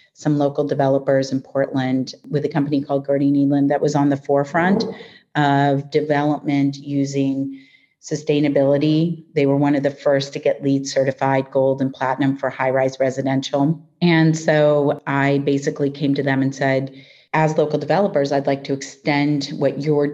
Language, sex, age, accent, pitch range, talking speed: English, female, 40-59, American, 135-145 Hz, 165 wpm